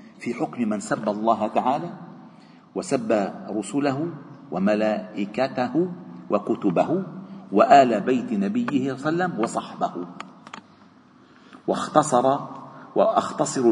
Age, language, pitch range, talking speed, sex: 50-69, Arabic, 140-235 Hz, 90 wpm, male